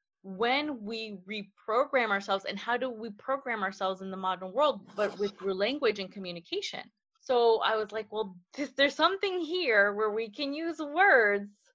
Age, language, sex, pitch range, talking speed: 20-39, English, female, 210-270 Hz, 165 wpm